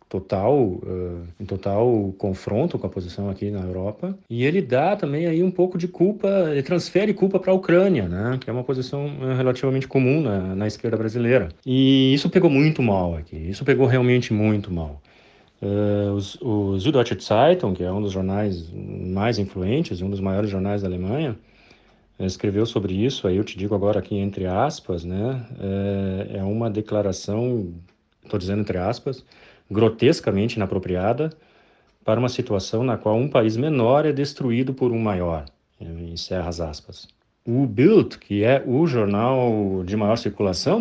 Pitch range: 100-150 Hz